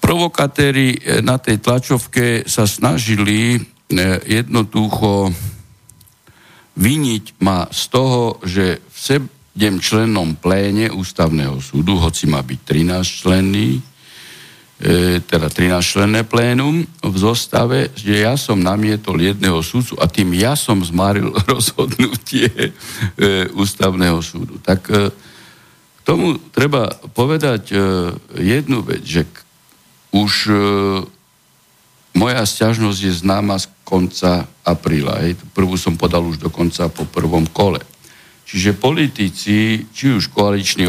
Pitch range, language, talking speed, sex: 90-110 Hz, Slovak, 110 wpm, male